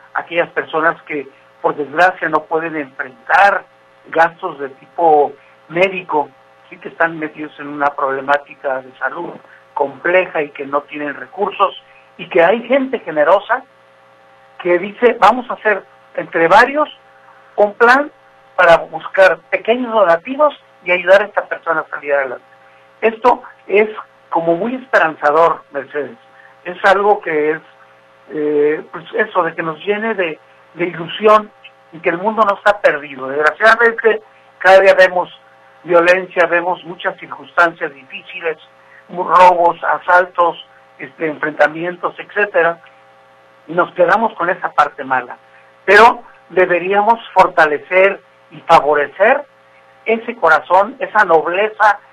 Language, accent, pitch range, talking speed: Spanish, Mexican, 145-195 Hz, 130 wpm